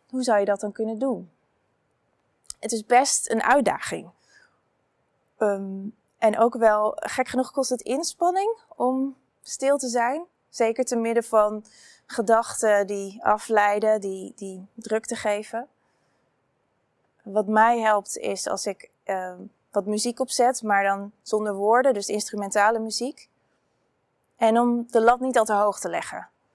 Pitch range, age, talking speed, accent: 210-245 Hz, 20-39, 145 wpm, Dutch